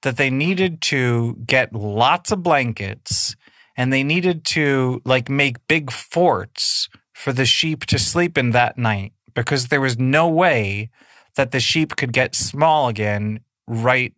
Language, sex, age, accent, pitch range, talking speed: English, male, 30-49, American, 115-150 Hz, 155 wpm